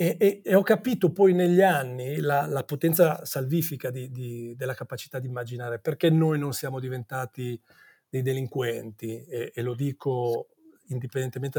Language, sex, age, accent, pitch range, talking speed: Italian, male, 40-59, native, 125-155 Hz, 140 wpm